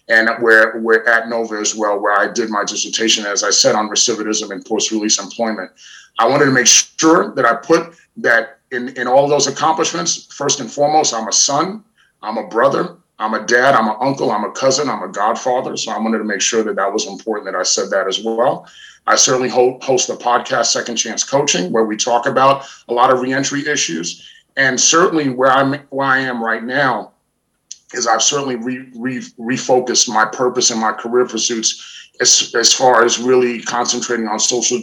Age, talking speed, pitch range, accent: 30-49, 200 wpm, 110-135 Hz, American